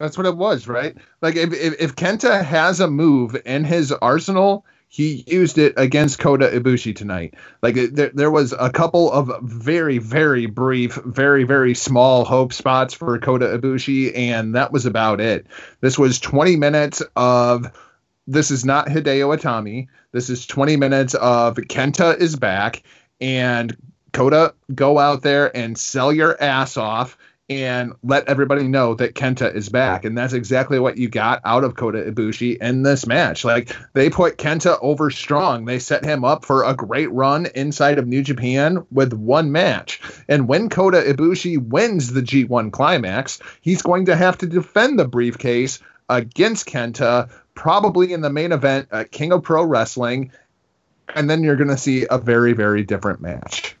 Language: English